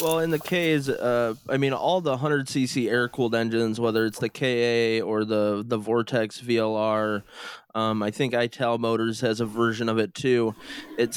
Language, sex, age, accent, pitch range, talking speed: English, male, 20-39, American, 115-130 Hz, 185 wpm